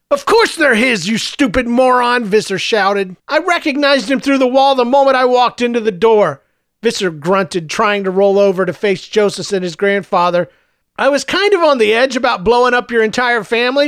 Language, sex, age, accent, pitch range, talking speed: English, male, 40-59, American, 195-245 Hz, 205 wpm